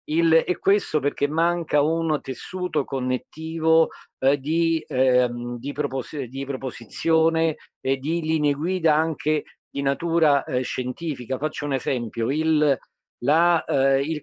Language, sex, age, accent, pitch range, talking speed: Italian, male, 50-69, native, 125-155 Hz, 105 wpm